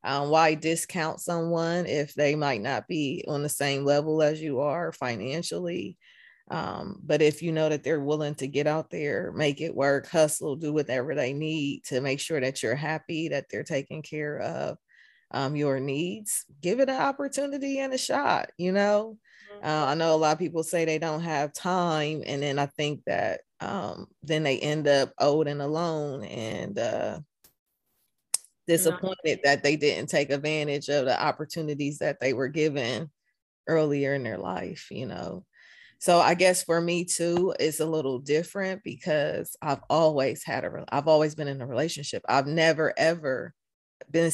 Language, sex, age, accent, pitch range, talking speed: English, female, 20-39, American, 145-165 Hz, 175 wpm